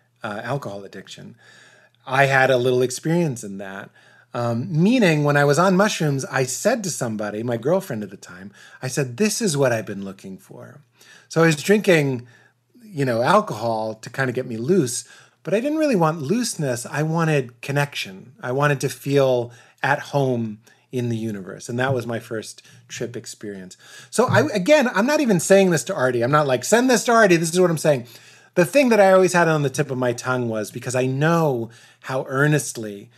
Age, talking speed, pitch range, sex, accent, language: 30-49, 205 wpm, 120-155 Hz, male, American, English